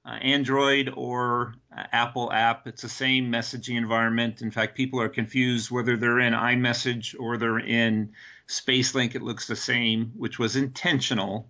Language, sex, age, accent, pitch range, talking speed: English, male, 50-69, American, 115-135 Hz, 160 wpm